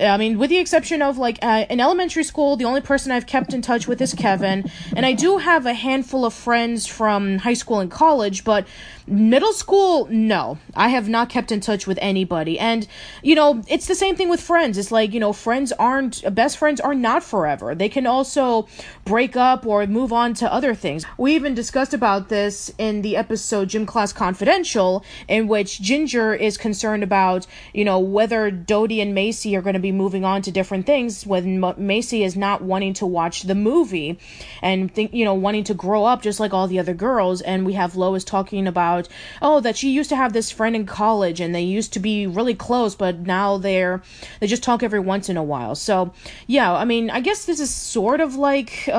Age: 20-39